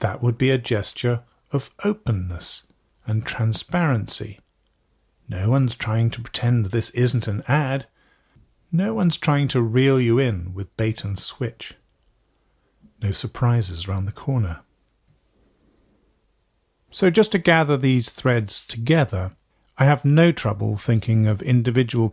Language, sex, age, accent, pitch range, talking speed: English, male, 40-59, British, 105-135 Hz, 130 wpm